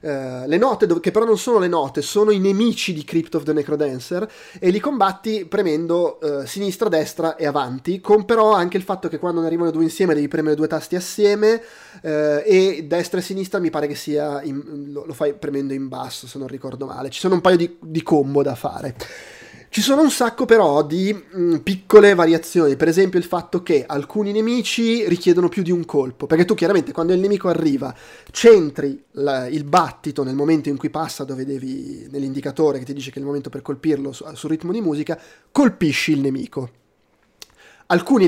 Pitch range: 150-195 Hz